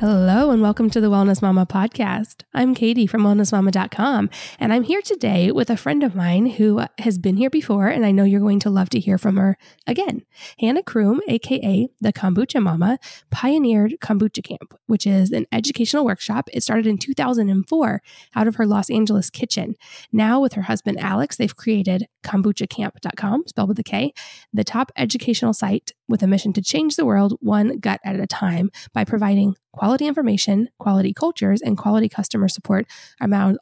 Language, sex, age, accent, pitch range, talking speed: English, female, 10-29, American, 195-235 Hz, 180 wpm